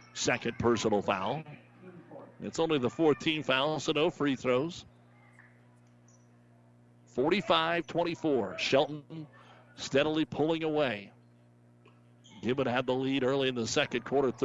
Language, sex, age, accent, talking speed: English, male, 50-69, American, 110 wpm